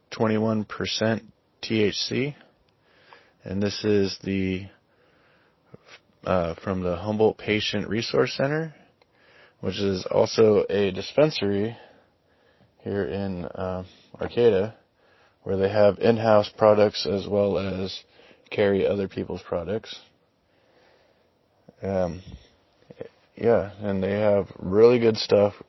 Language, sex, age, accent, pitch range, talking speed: English, male, 20-39, American, 95-110 Hz, 95 wpm